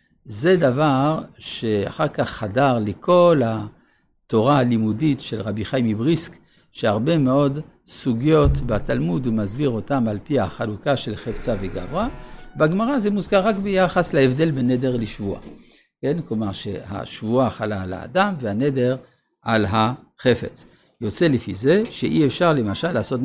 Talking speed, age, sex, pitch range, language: 130 wpm, 60-79, male, 110-160 Hz, Hebrew